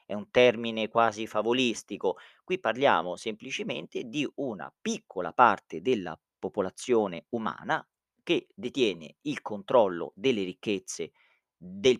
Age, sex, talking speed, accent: 40-59, male, 110 wpm, native